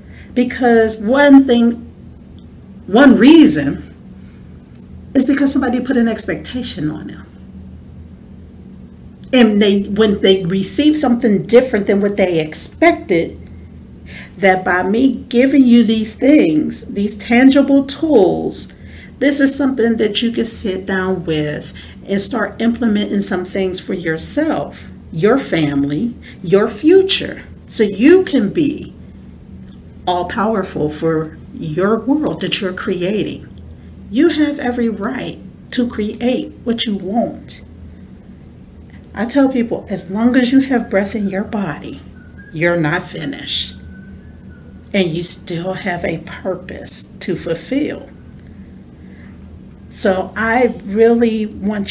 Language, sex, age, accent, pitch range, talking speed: English, female, 50-69, American, 185-250 Hz, 120 wpm